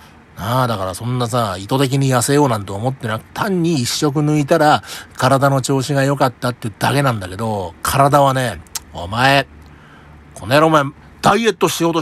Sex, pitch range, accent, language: male, 100-160 Hz, native, Japanese